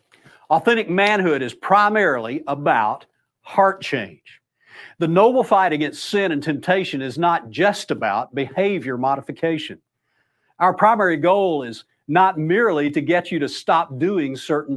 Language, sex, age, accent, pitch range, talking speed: English, male, 50-69, American, 140-185 Hz, 135 wpm